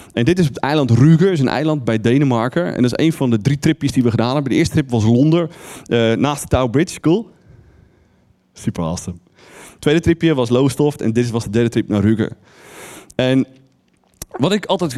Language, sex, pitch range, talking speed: Dutch, male, 115-170 Hz, 210 wpm